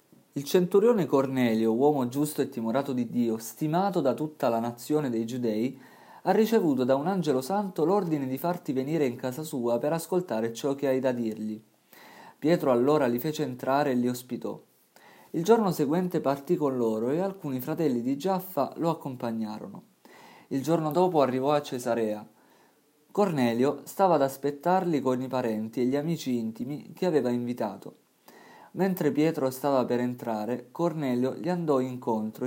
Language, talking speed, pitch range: Italian, 160 wpm, 120-155 Hz